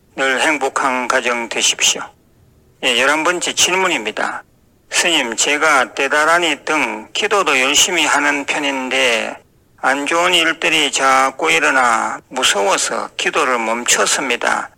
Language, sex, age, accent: Korean, male, 40-59, native